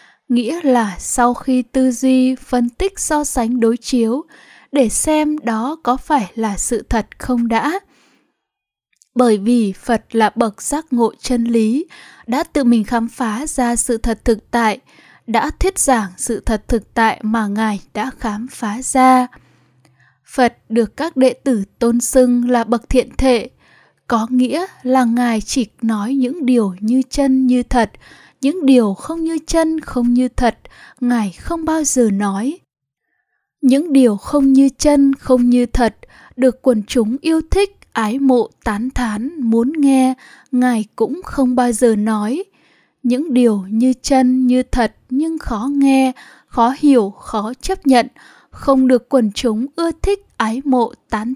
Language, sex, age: Vietnamese, female, 10-29